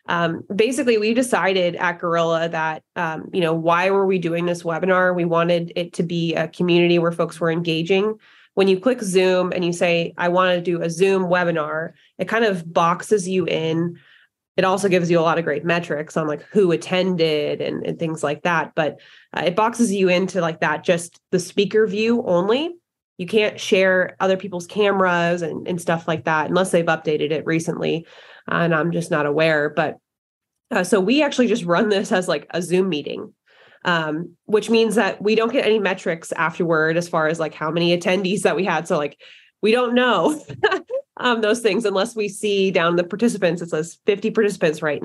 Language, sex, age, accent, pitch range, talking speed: English, female, 20-39, American, 170-210 Hz, 200 wpm